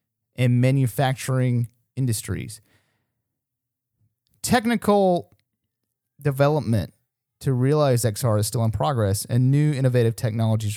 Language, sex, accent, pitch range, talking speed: English, male, American, 105-125 Hz, 90 wpm